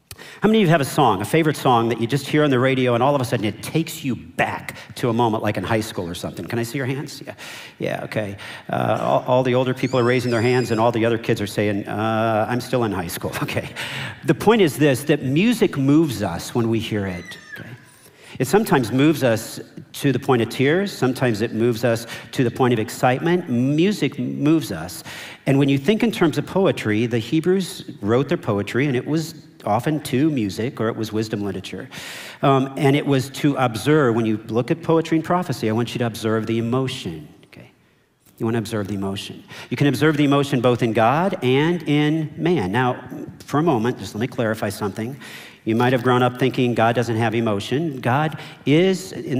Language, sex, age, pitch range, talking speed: English, male, 50-69, 115-150 Hz, 225 wpm